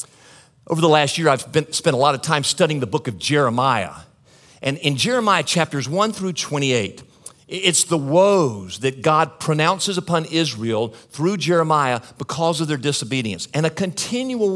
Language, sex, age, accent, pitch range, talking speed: English, male, 50-69, American, 135-190 Hz, 165 wpm